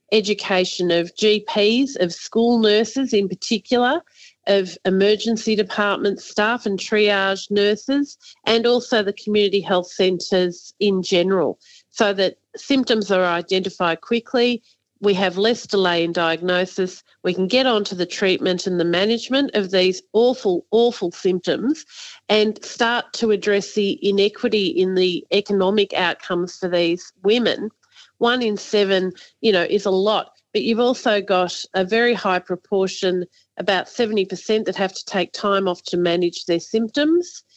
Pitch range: 185-220 Hz